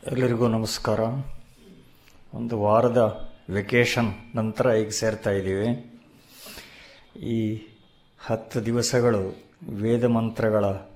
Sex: male